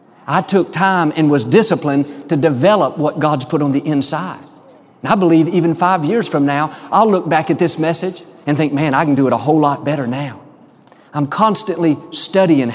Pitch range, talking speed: 150-195 Hz, 200 wpm